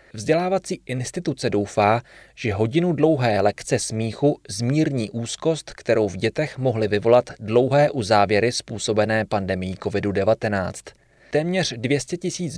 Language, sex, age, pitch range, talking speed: Czech, male, 30-49, 110-145 Hz, 110 wpm